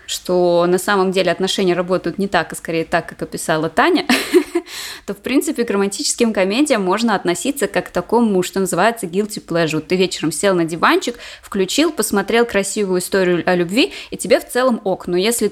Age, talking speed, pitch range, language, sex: 20-39, 190 wpm, 180-210 Hz, Russian, female